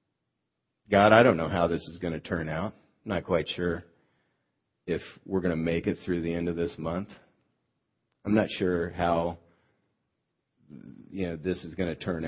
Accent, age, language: American, 50-69, English